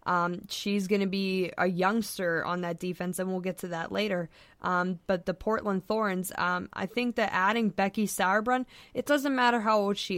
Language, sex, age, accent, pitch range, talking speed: English, female, 20-39, American, 185-210 Hz, 200 wpm